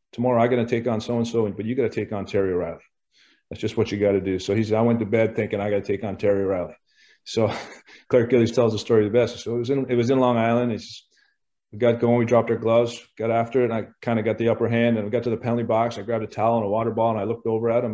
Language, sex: English, male